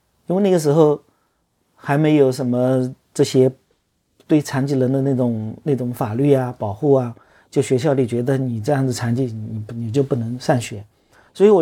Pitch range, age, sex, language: 120-150 Hz, 40-59, male, Chinese